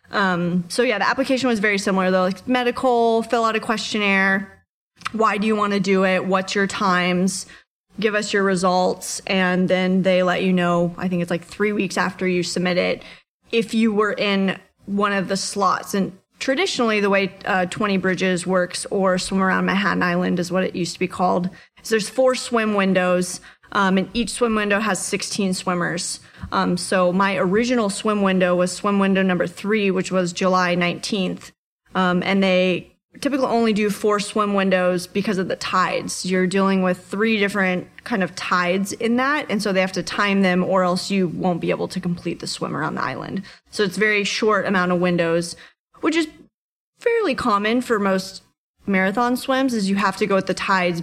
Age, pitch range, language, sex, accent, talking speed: 20-39, 180-210 Hz, English, female, American, 195 wpm